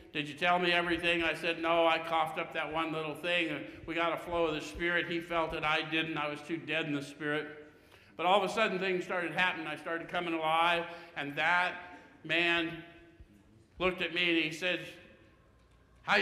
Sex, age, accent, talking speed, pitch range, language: male, 60-79, American, 210 wpm, 140-170 Hz, English